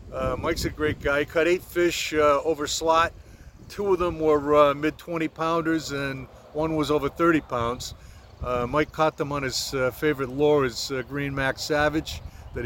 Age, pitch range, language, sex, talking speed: 50-69, 130-165 Hz, English, male, 190 wpm